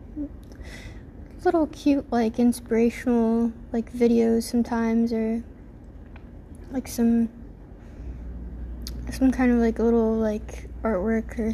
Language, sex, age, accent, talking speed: English, female, 20-39, American, 95 wpm